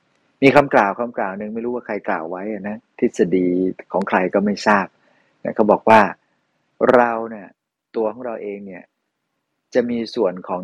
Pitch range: 100-120 Hz